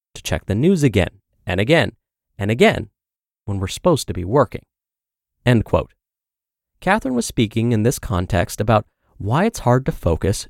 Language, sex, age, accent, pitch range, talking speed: English, male, 30-49, American, 100-145 Hz, 165 wpm